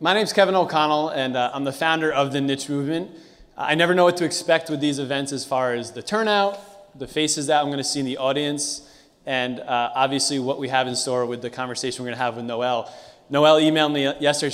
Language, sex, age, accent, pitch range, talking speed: English, male, 20-39, American, 130-150 Hz, 245 wpm